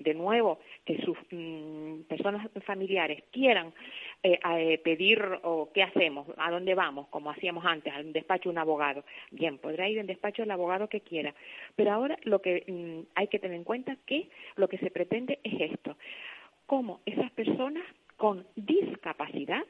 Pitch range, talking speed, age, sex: 175-250 Hz, 170 wpm, 50-69, female